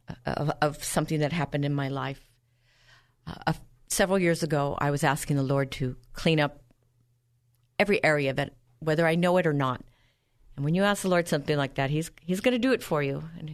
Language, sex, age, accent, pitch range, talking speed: English, female, 50-69, American, 125-165 Hz, 215 wpm